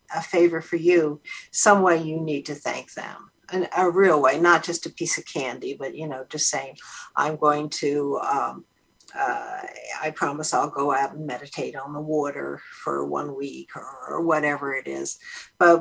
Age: 60-79